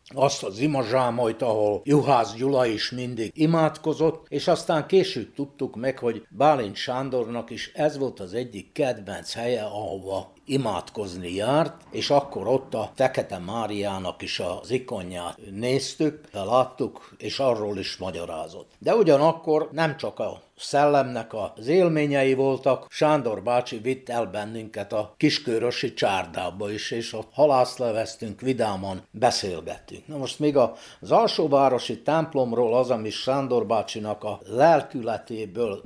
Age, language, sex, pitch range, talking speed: 60-79, Hungarian, male, 105-145 Hz, 130 wpm